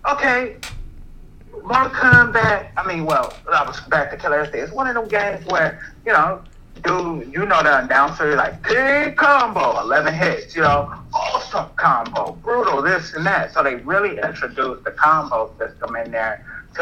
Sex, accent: male, American